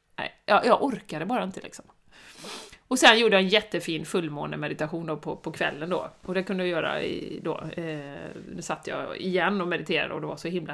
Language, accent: Swedish, native